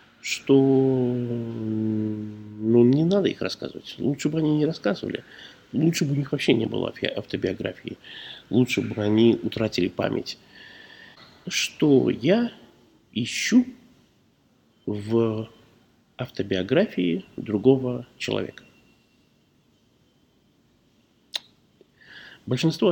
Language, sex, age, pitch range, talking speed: Russian, male, 50-69, 110-150 Hz, 85 wpm